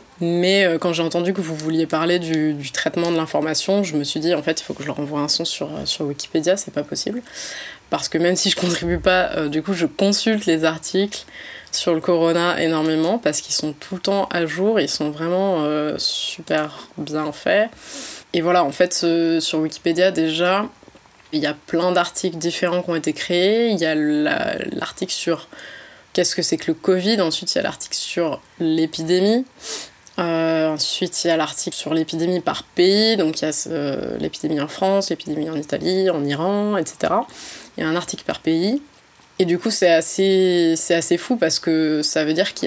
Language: French